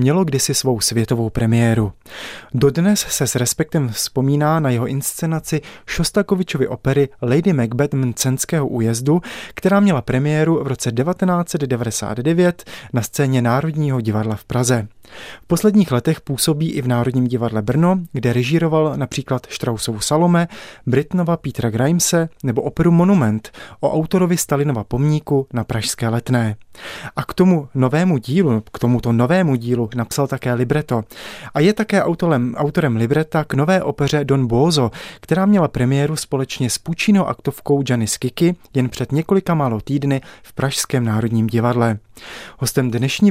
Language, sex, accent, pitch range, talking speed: Czech, male, native, 120-160 Hz, 140 wpm